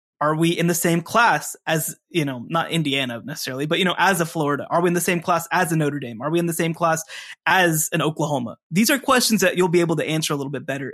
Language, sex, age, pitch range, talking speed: English, male, 20-39, 145-175 Hz, 275 wpm